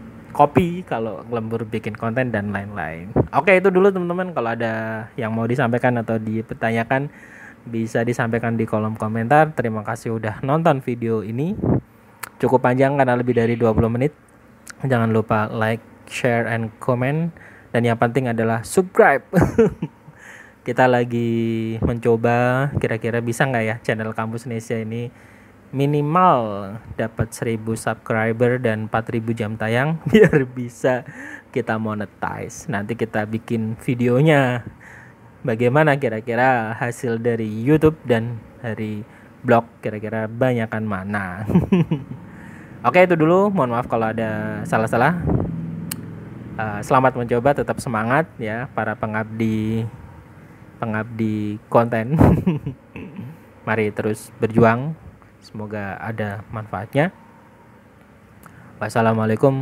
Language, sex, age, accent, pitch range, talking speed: Indonesian, male, 20-39, native, 110-130 Hz, 115 wpm